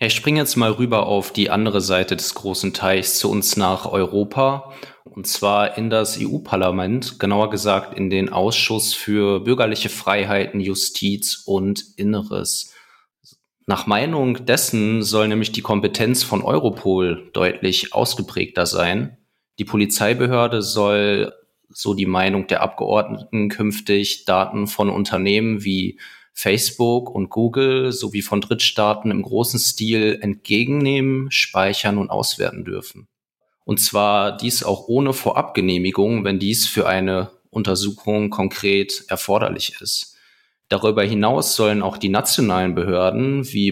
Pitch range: 100-115 Hz